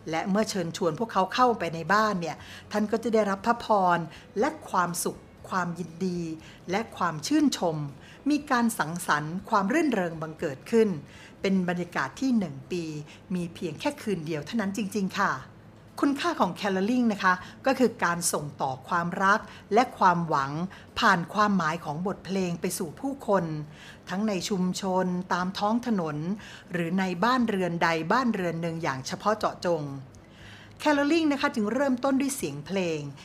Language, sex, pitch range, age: Thai, female, 170-225 Hz, 60-79